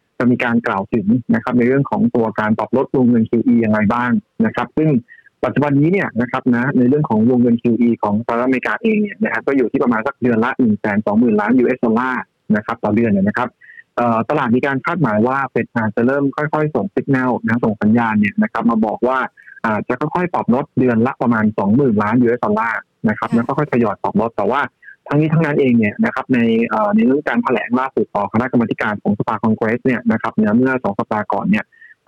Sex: male